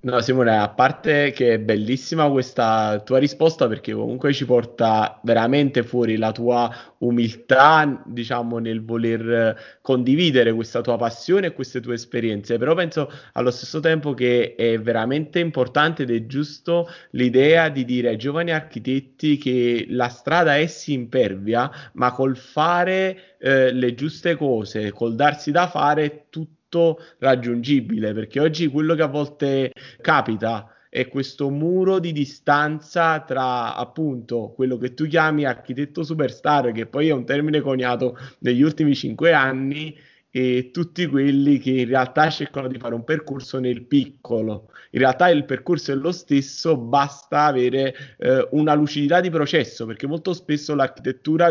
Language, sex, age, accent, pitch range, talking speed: Italian, male, 30-49, native, 125-155 Hz, 150 wpm